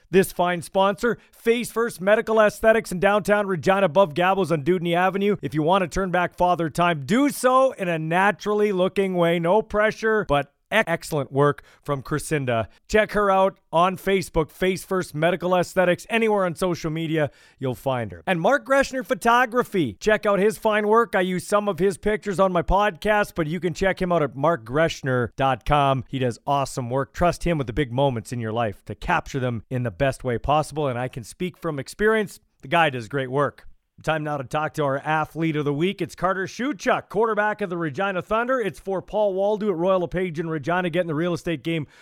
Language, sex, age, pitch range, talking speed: English, male, 40-59, 145-200 Hz, 205 wpm